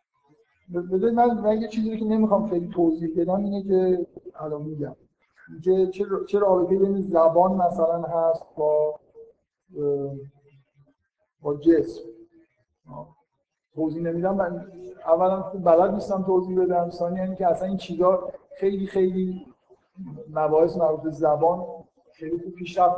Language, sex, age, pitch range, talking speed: Persian, male, 50-69, 155-185 Hz, 130 wpm